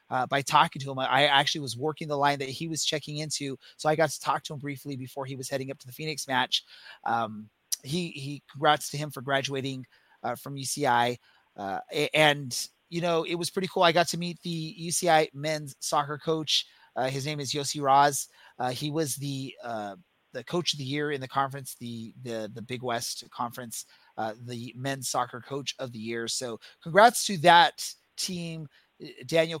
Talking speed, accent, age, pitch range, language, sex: 205 wpm, American, 30-49, 130-160 Hz, English, male